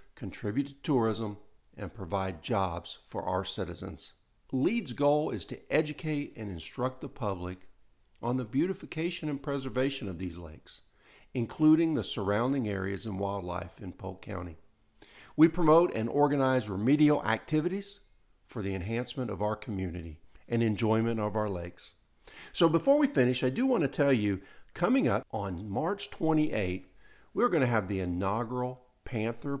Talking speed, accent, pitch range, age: 145 wpm, American, 100-145 Hz, 50-69